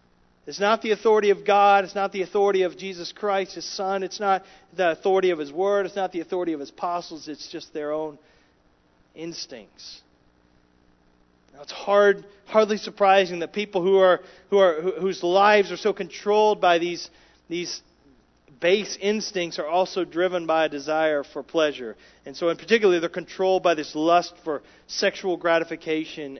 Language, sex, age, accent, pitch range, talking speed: English, male, 40-59, American, 145-190 Hz, 175 wpm